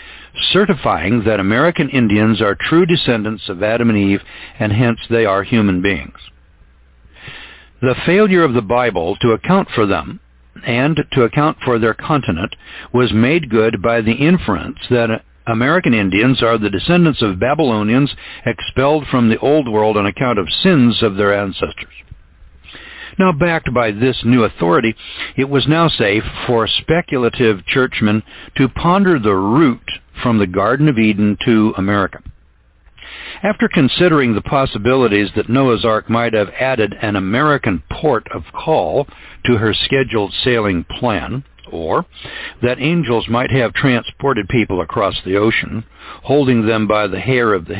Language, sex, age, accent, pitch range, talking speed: English, male, 60-79, American, 105-130 Hz, 150 wpm